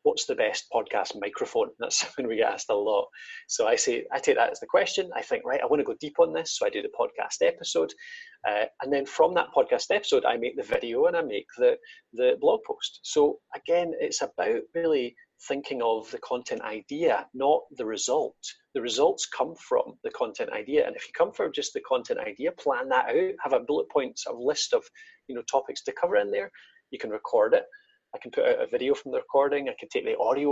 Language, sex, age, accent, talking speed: English, male, 30-49, British, 235 wpm